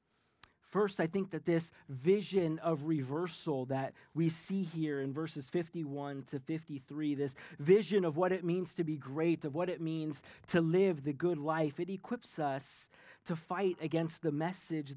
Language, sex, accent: English, male, American